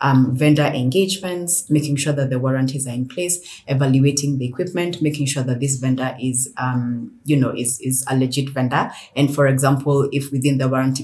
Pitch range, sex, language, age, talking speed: 130-145 Hz, female, English, 30-49, 190 wpm